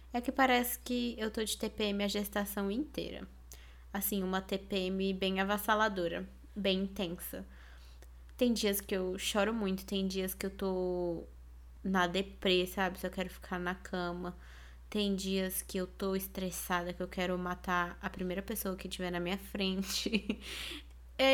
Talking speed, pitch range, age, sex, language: 160 wpm, 175-210 Hz, 20-39, female, Portuguese